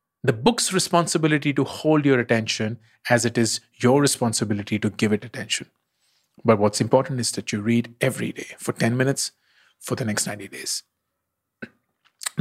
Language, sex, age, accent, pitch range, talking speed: English, male, 40-59, Indian, 115-155 Hz, 160 wpm